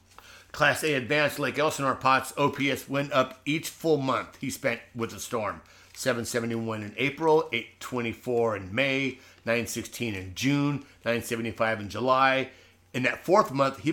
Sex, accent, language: male, American, English